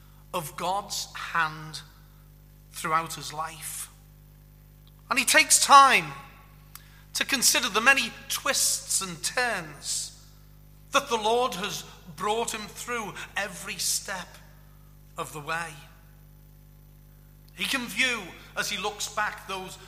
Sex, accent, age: male, British, 40-59